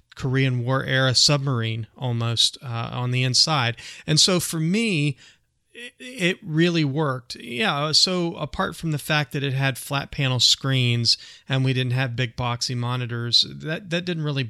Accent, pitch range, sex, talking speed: American, 125-145 Hz, male, 165 wpm